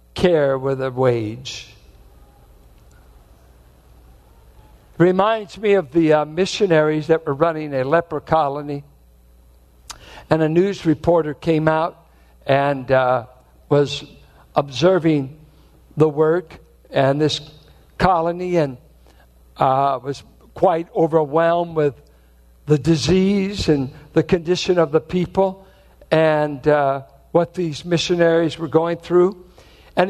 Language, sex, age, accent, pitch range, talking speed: English, male, 60-79, American, 110-180 Hz, 110 wpm